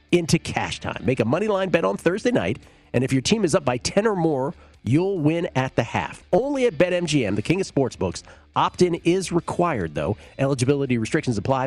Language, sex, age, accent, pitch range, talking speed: English, male, 40-59, American, 105-140 Hz, 205 wpm